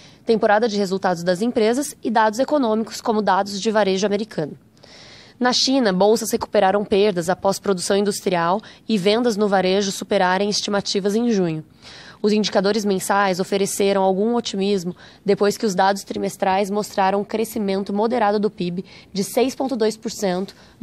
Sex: female